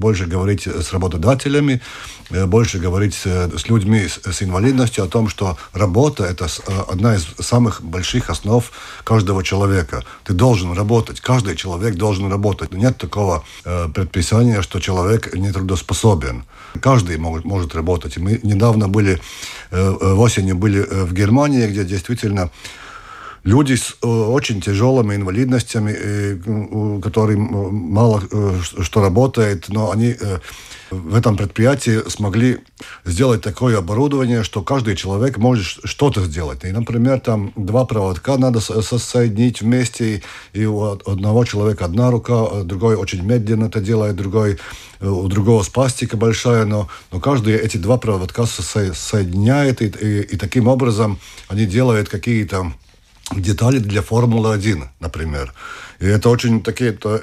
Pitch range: 95-120 Hz